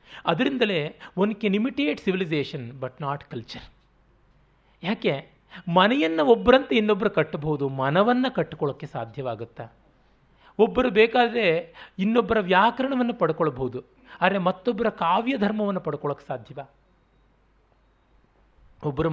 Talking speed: 90 wpm